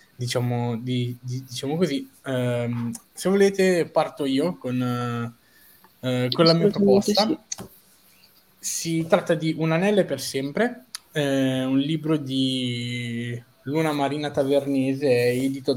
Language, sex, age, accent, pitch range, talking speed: Italian, male, 20-39, native, 125-155 Hz, 120 wpm